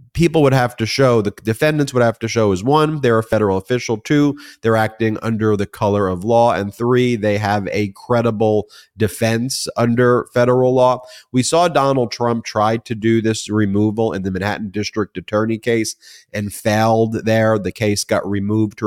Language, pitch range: English, 95-115 Hz